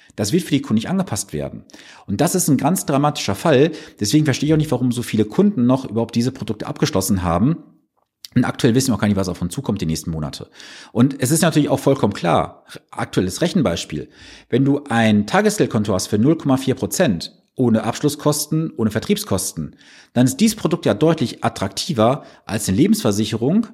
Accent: German